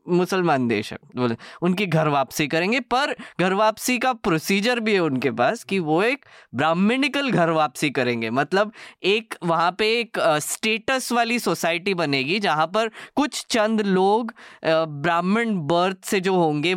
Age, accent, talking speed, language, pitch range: 20-39, native, 150 wpm, Hindi, 155-220 Hz